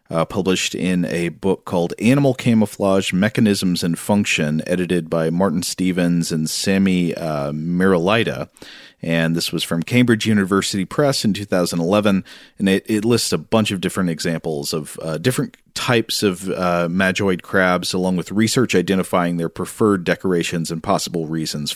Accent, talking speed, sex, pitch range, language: American, 150 wpm, male, 85-110 Hz, English